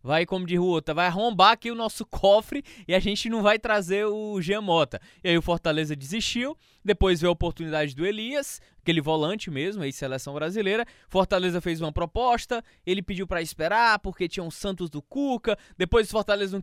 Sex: male